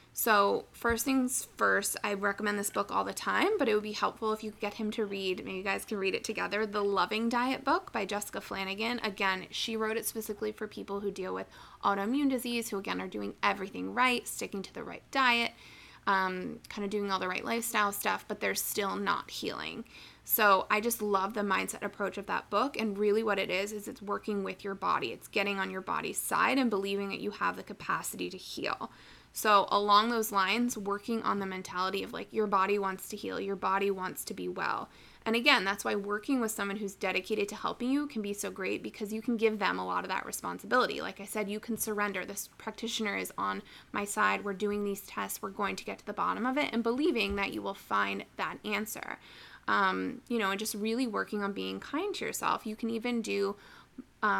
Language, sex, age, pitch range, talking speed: English, female, 20-39, 195-230 Hz, 230 wpm